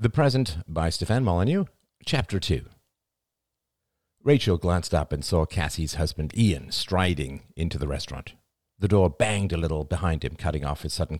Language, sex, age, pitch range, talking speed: English, male, 50-69, 80-115 Hz, 160 wpm